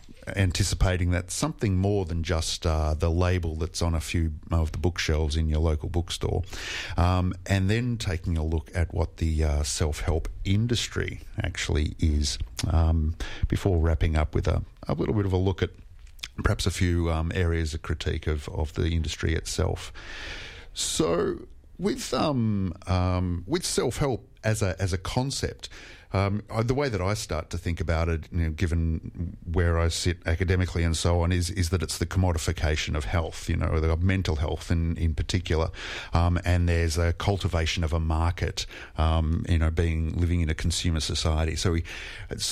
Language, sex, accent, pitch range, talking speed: English, male, Australian, 80-95 Hz, 175 wpm